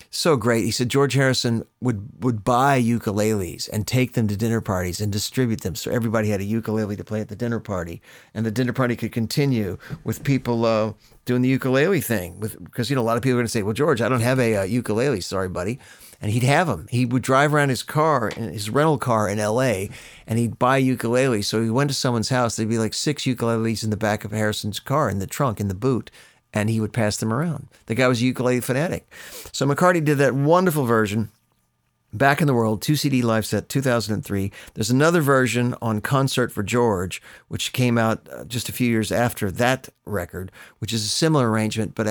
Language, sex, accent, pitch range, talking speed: English, male, American, 105-125 Hz, 220 wpm